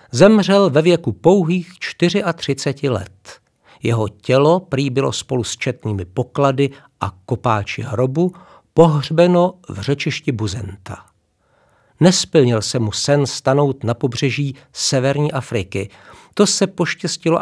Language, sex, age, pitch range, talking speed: Czech, male, 50-69, 120-160 Hz, 115 wpm